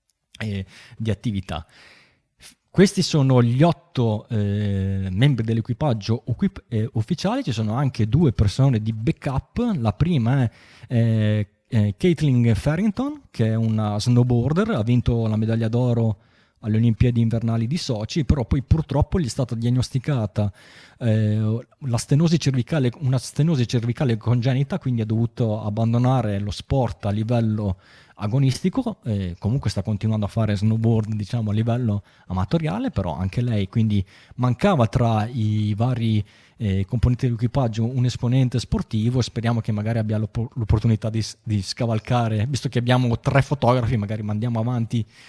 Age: 20-39